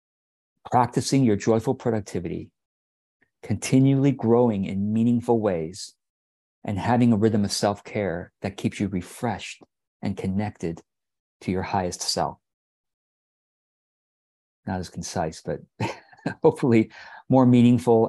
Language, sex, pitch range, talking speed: English, male, 95-115 Hz, 105 wpm